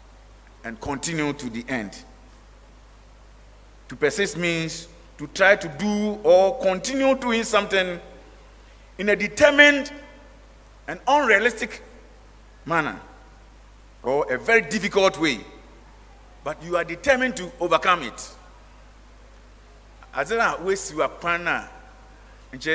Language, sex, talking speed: English, male, 95 wpm